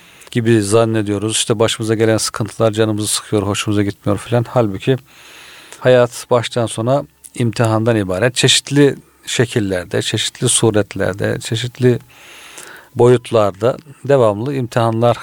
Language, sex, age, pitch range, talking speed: Turkish, male, 50-69, 105-125 Hz, 100 wpm